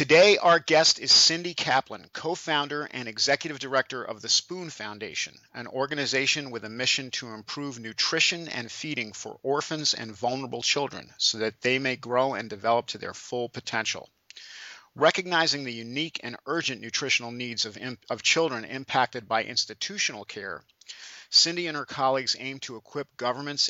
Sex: male